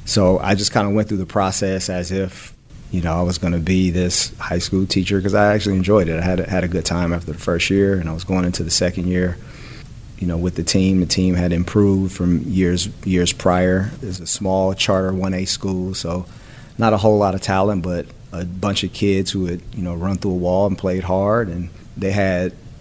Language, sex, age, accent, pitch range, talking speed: English, male, 30-49, American, 90-100 Hz, 245 wpm